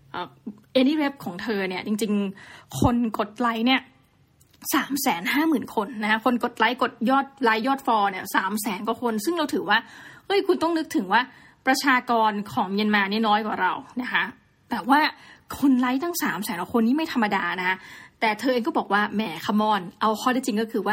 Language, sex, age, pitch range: Thai, female, 20-39, 210-255 Hz